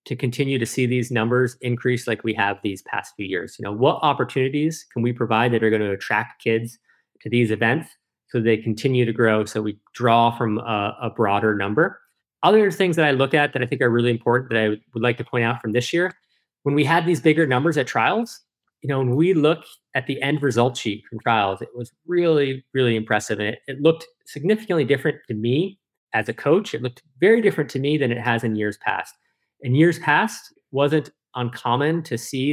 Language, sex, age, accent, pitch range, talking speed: English, male, 30-49, American, 120-160 Hz, 225 wpm